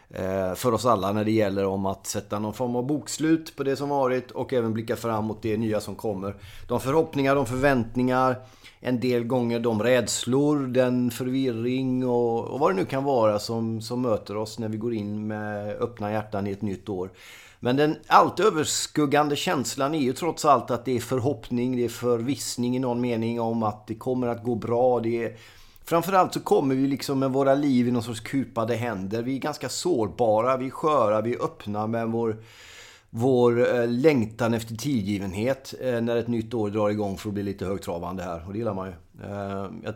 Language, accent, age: Swedish, native, 30-49